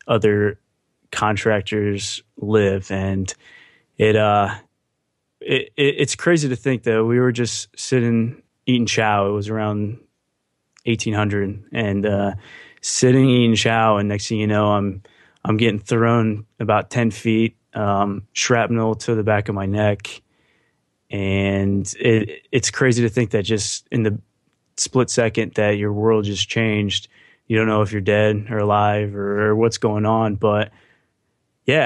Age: 20-39